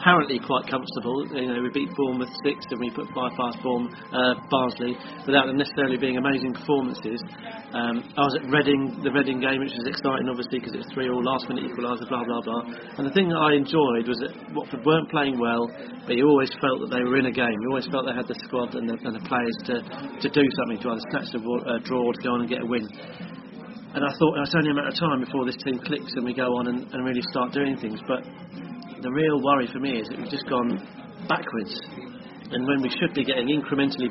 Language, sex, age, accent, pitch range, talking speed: English, male, 40-59, British, 125-140 Hz, 245 wpm